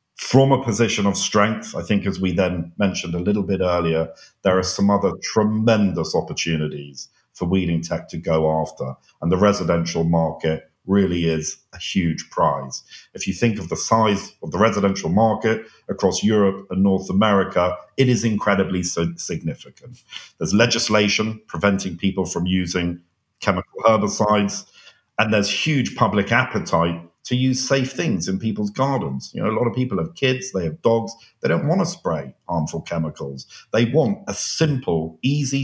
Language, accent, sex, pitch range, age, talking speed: English, British, male, 85-110 Hz, 50-69, 165 wpm